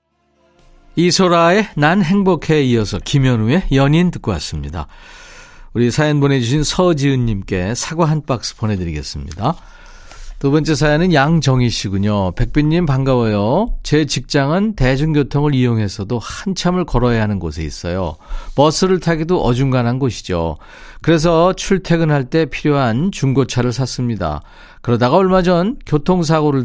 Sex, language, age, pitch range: male, Korean, 40-59, 115-155 Hz